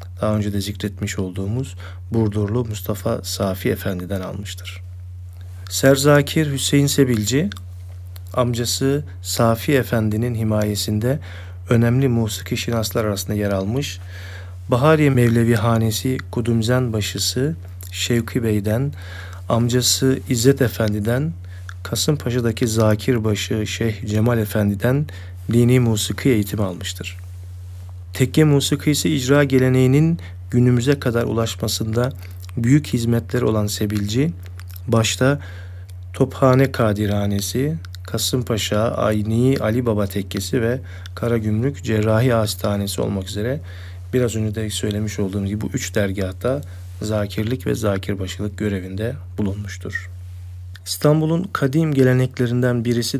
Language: Turkish